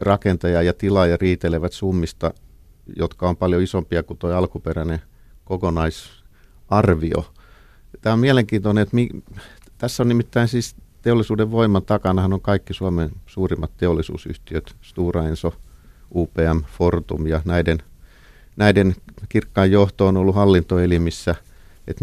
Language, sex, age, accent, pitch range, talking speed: Finnish, male, 50-69, native, 85-105 Hz, 115 wpm